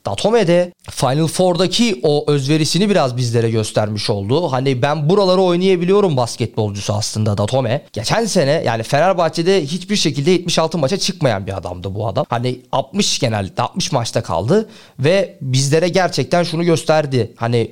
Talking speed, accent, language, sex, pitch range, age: 140 wpm, native, Turkish, male, 120-165 Hz, 30-49